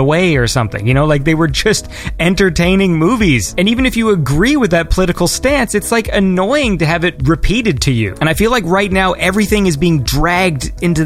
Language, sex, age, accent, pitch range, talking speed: English, male, 30-49, American, 130-180 Hz, 215 wpm